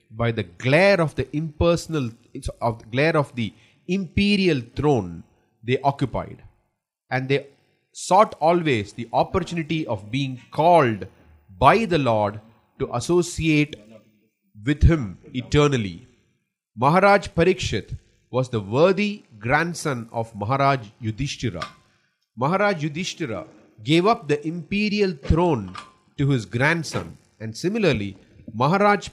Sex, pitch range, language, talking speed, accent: male, 115-160 Hz, English, 110 wpm, Indian